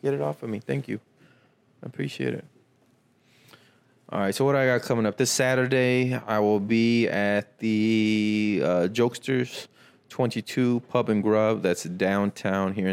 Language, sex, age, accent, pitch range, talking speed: English, male, 20-39, American, 100-125 Hz, 160 wpm